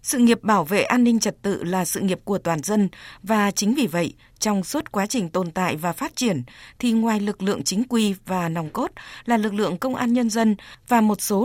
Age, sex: 20-39, female